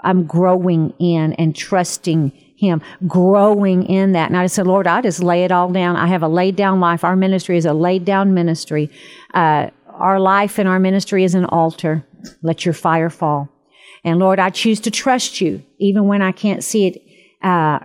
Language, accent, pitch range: English, American, 175-210 Hz